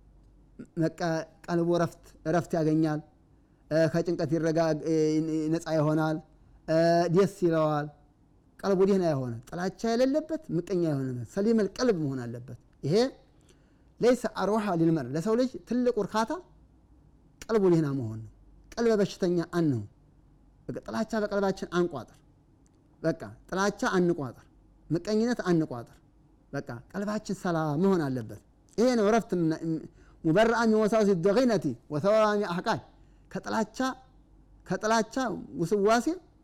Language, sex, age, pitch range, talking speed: Amharic, male, 30-49, 150-215 Hz, 75 wpm